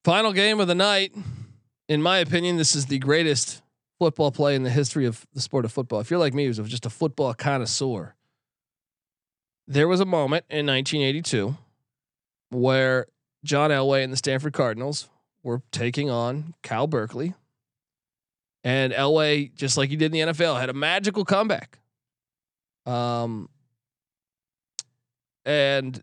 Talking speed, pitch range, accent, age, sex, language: 150 wpm, 130-170 Hz, American, 20-39, male, English